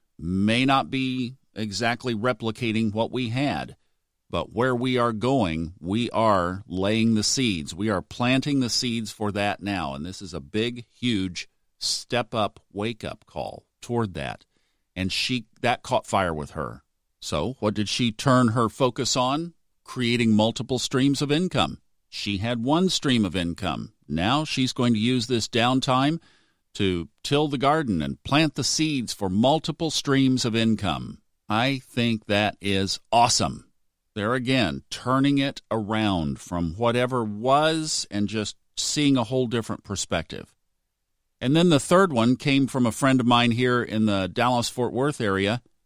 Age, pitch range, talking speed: 50-69, 100-130 Hz, 155 wpm